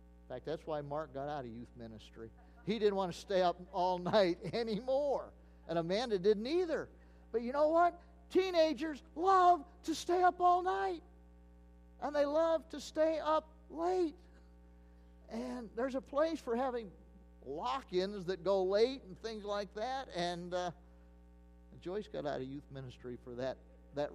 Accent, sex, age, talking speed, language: American, male, 50-69, 160 wpm, English